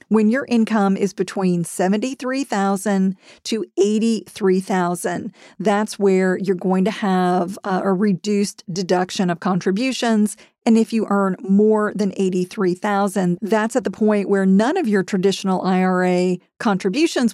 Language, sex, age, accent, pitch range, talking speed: English, female, 40-59, American, 190-225 Hz, 130 wpm